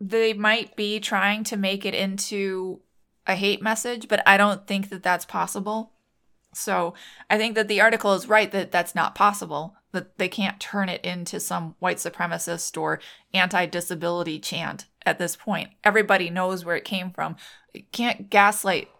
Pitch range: 180-210 Hz